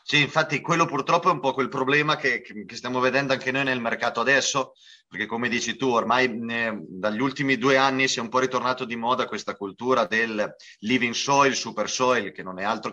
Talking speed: 215 wpm